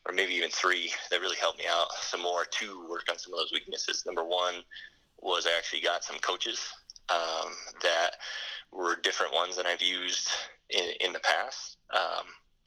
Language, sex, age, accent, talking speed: English, male, 20-39, American, 185 wpm